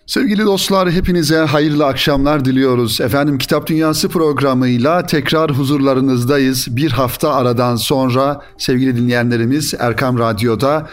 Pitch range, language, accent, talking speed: 120-155 Hz, Turkish, native, 110 wpm